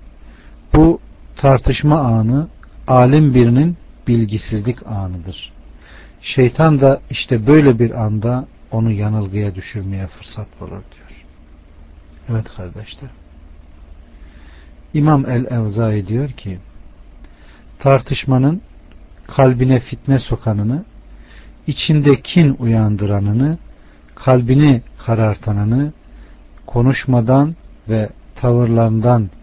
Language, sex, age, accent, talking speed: Turkish, male, 40-59, native, 75 wpm